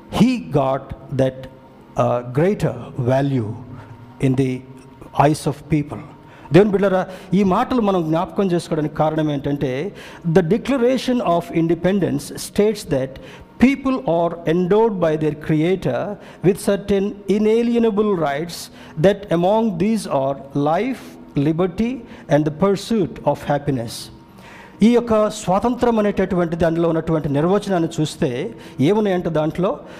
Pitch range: 155-220 Hz